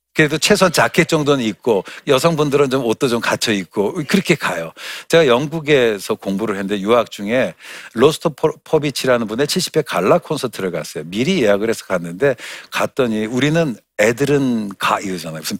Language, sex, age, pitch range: Korean, male, 60-79, 100-150 Hz